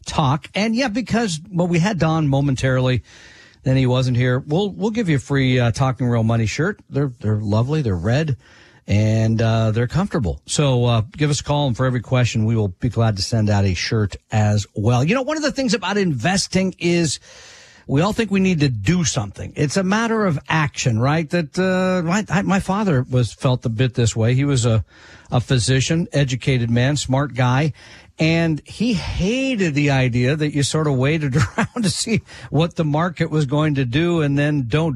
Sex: male